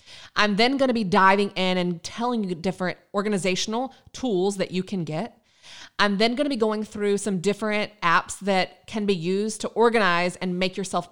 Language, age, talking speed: English, 20-39, 195 wpm